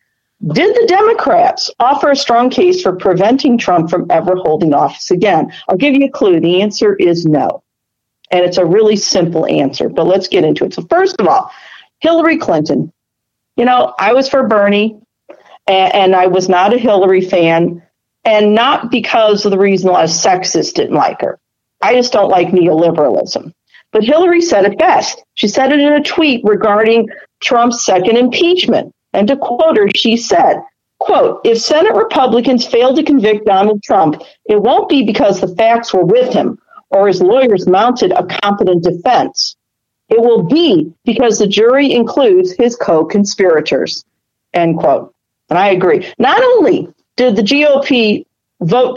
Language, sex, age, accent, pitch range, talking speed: English, female, 50-69, American, 190-290 Hz, 170 wpm